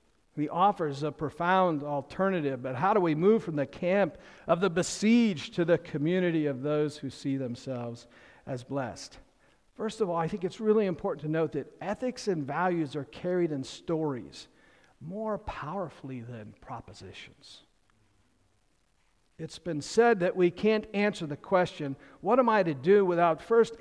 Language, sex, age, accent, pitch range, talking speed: English, male, 50-69, American, 150-195 Hz, 160 wpm